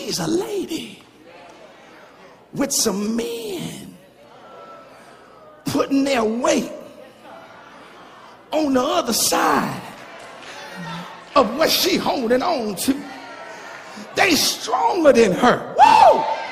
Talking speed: 85 wpm